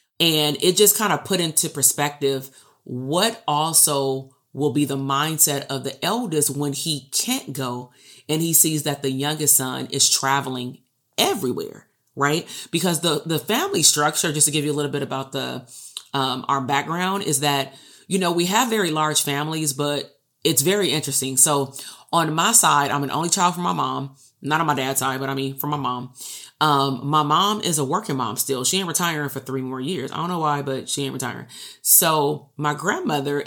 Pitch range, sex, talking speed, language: 135-170 Hz, female, 195 wpm, English